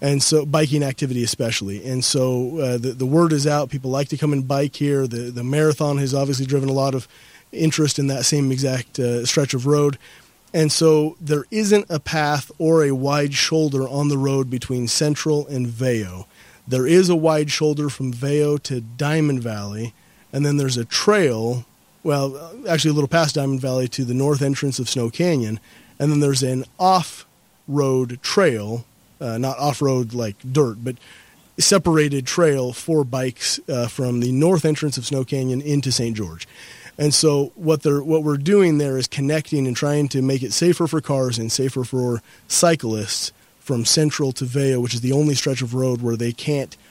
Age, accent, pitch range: 30-49, American, 125-150 Hz